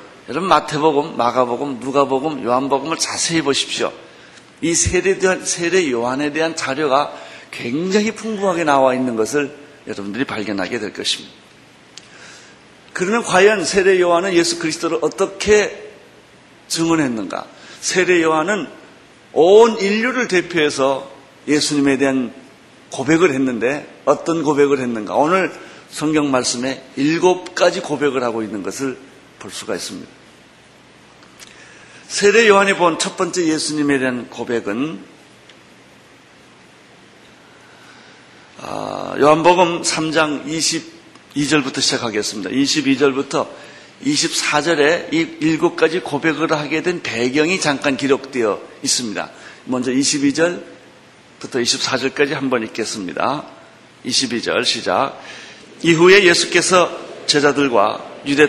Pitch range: 135-180 Hz